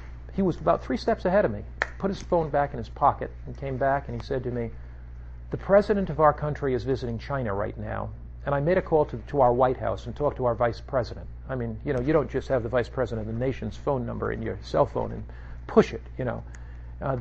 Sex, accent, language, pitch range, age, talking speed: male, American, English, 100-140 Hz, 50-69, 260 wpm